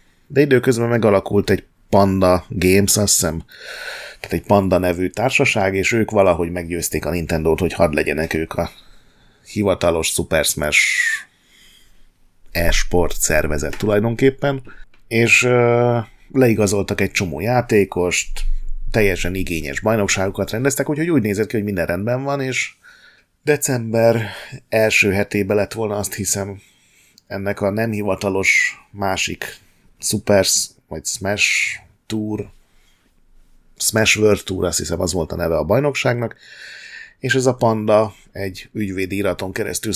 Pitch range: 90-115 Hz